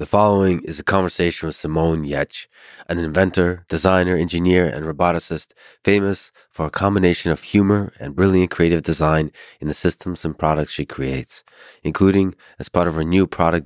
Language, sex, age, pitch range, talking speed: English, male, 20-39, 75-90 Hz, 165 wpm